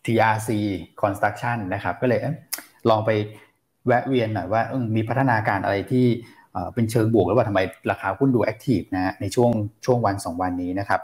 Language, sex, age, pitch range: Thai, male, 20-39, 105-130 Hz